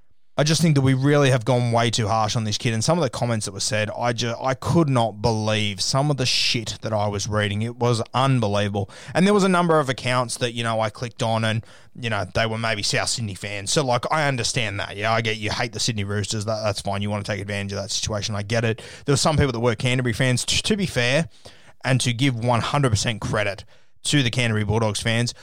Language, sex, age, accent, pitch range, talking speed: English, male, 20-39, Australian, 105-130 Hz, 265 wpm